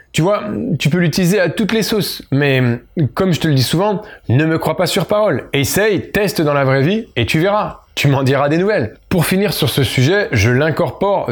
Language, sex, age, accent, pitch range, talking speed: French, male, 20-39, French, 130-185 Hz, 230 wpm